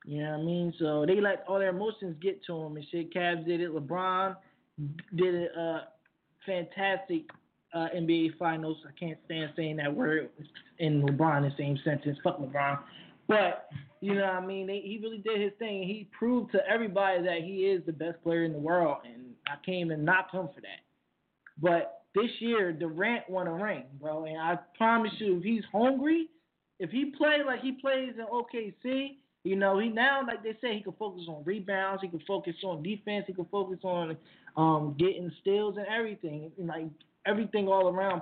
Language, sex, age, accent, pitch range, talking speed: English, male, 20-39, American, 165-205 Hz, 195 wpm